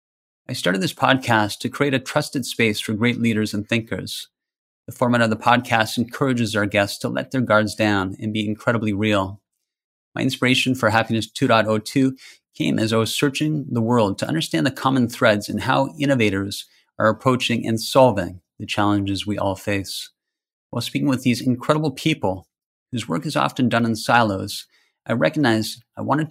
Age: 30-49